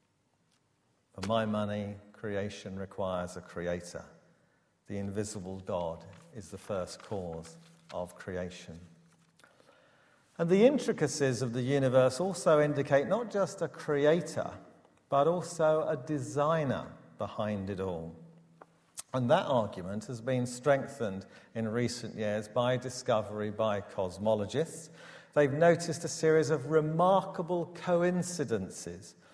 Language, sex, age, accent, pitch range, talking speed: English, male, 50-69, British, 100-155 Hz, 115 wpm